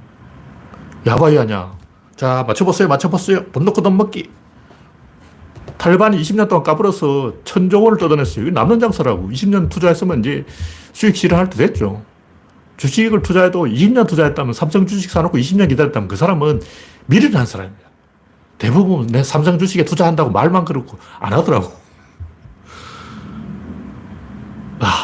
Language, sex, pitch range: Korean, male, 115-190 Hz